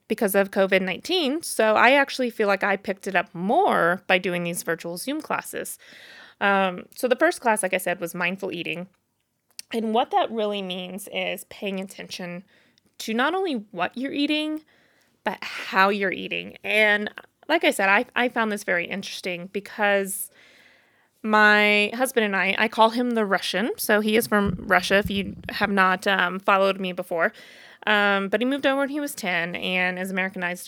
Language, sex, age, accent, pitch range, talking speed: English, female, 20-39, American, 190-240 Hz, 180 wpm